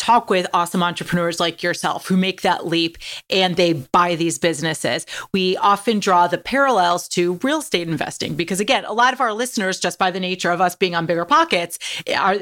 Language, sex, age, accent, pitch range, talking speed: English, female, 30-49, American, 175-215 Hz, 205 wpm